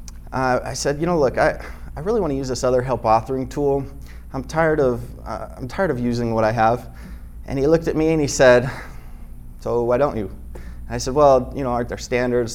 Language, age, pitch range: English, 20-39, 105-145 Hz